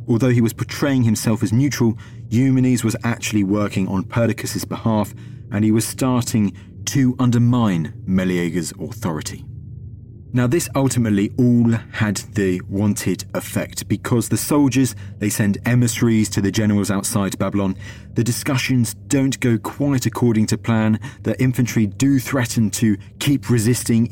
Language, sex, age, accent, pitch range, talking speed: English, male, 30-49, British, 100-125 Hz, 135 wpm